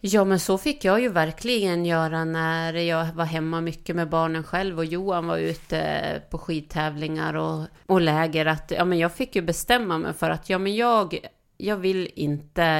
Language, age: English, 30-49